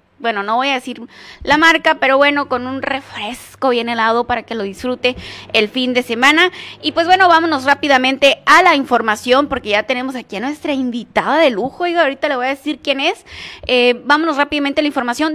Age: 20-39